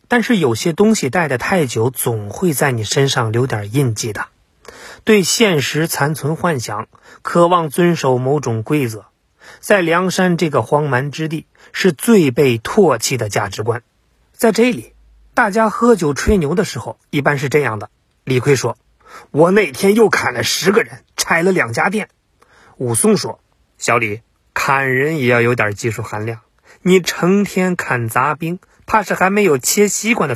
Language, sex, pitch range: Chinese, male, 125-200 Hz